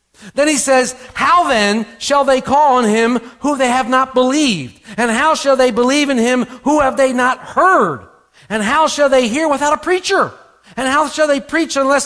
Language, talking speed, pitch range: English, 205 wpm, 235-330 Hz